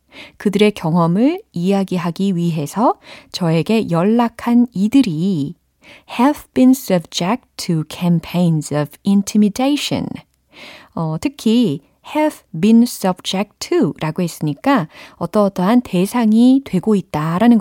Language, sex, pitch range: Korean, female, 165-255 Hz